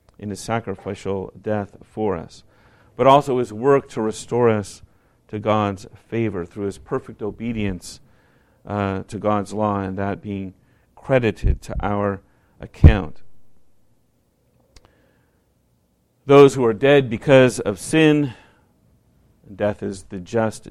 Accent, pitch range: American, 100-120 Hz